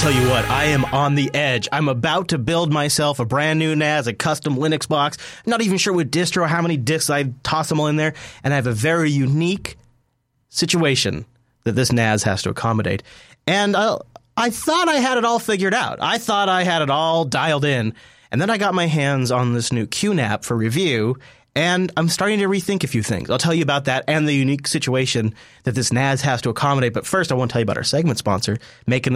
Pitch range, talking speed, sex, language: 125-165 Hz, 235 wpm, male, English